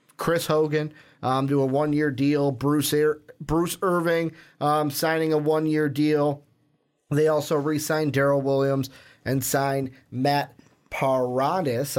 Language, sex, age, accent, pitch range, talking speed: English, male, 30-49, American, 135-155 Hz, 125 wpm